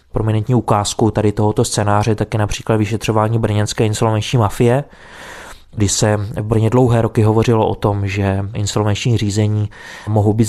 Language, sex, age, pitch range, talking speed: Czech, male, 20-39, 105-120 Hz, 150 wpm